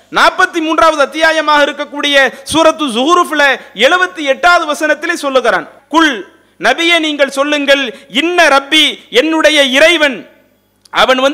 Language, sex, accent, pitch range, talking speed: English, male, Indian, 275-340 Hz, 100 wpm